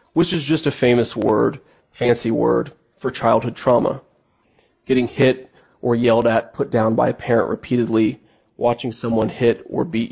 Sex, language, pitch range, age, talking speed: male, English, 120-150 Hz, 30-49, 160 wpm